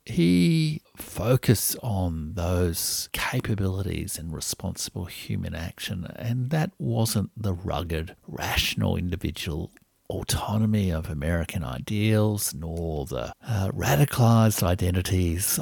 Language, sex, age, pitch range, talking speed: English, male, 50-69, 90-120 Hz, 95 wpm